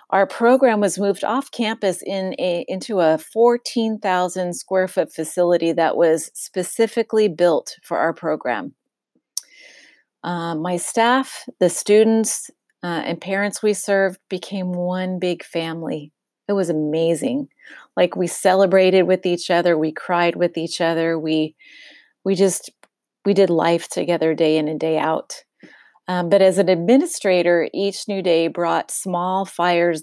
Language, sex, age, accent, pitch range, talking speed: English, female, 30-49, American, 170-215 Hz, 140 wpm